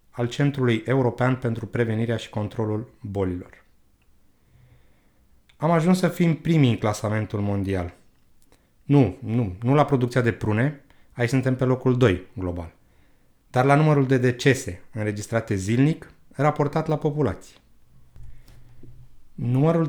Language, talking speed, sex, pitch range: Romanian, 120 wpm, male, 105-135 Hz